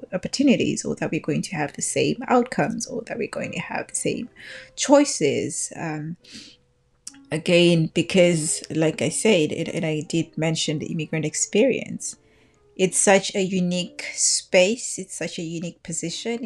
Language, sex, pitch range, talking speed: English, female, 160-185 Hz, 155 wpm